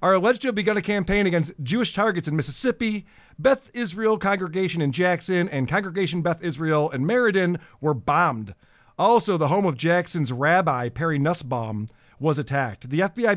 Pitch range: 140-200 Hz